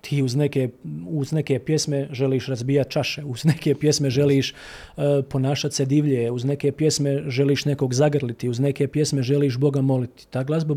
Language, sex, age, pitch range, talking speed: Croatian, male, 40-59, 125-150 Hz, 175 wpm